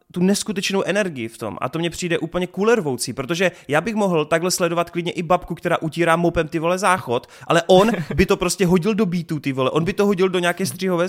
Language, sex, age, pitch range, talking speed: Czech, male, 20-39, 145-180 Hz, 235 wpm